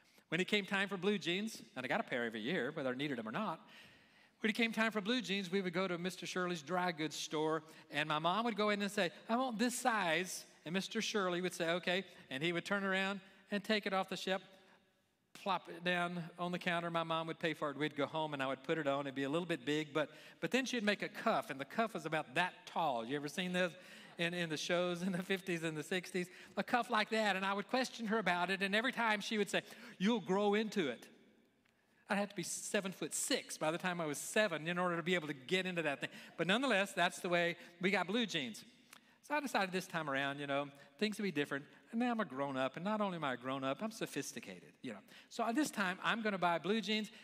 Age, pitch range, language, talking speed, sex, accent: 40-59, 160-210 Hz, English, 270 wpm, male, American